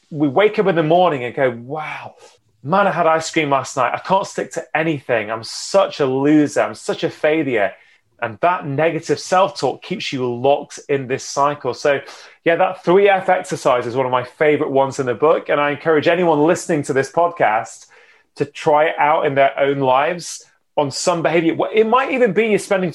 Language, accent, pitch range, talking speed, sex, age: English, British, 135-175 Hz, 205 wpm, male, 30-49